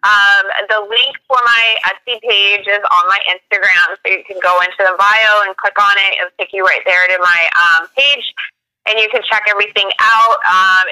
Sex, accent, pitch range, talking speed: female, American, 180-210 Hz, 210 wpm